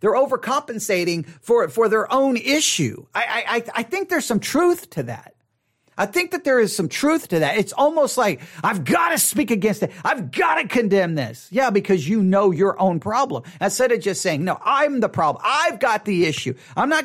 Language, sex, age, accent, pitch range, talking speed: English, male, 40-59, American, 130-215 Hz, 210 wpm